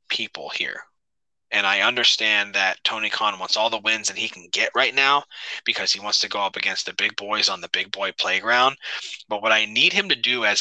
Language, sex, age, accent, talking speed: English, male, 20-39, American, 230 wpm